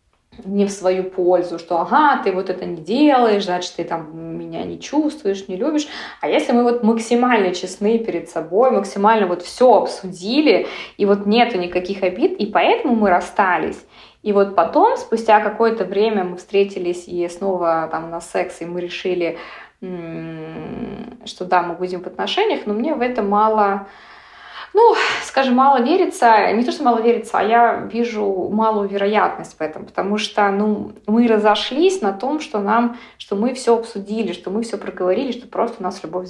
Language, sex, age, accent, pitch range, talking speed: Russian, female, 20-39, native, 185-235 Hz, 175 wpm